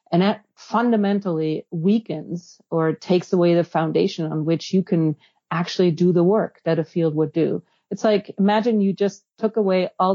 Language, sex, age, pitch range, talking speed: English, female, 40-59, 165-195 Hz, 175 wpm